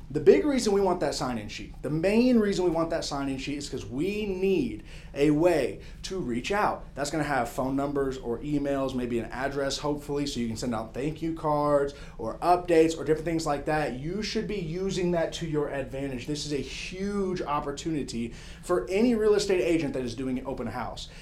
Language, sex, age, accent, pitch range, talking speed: English, male, 30-49, American, 125-165 Hz, 210 wpm